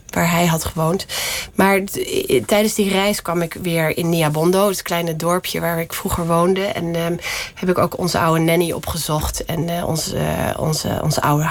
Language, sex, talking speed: Dutch, female, 190 wpm